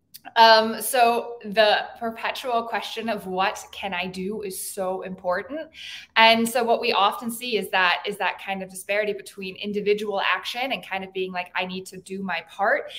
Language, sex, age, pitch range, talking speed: English, female, 20-39, 185-230 Hz, 185 wpm